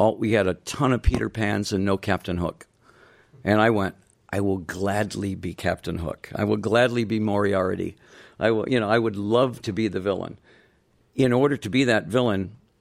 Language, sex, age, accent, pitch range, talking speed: English, male, 60-79, American, 100-120 Hz, 185 wpm